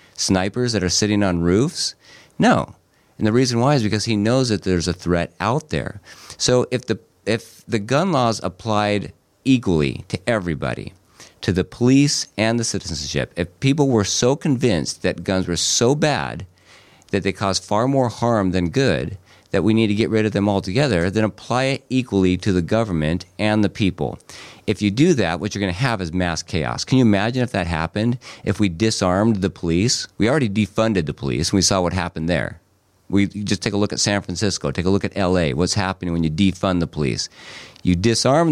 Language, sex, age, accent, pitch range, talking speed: English, male, 50-69, American, 90-115 Hz, 205 wpm